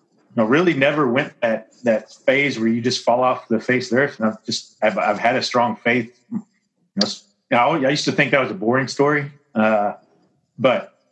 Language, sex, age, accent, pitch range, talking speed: English, male, 30-49, American, 115-135 Hz, 220 wpm